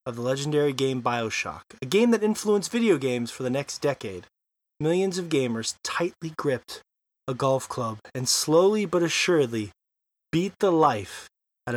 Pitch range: 120-170 Hz